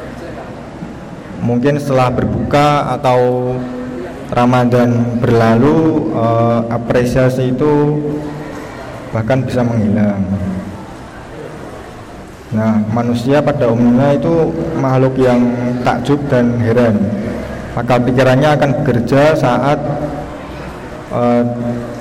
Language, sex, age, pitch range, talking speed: Indonesian, male, 20-39, 120-140 Hz, 75 wpm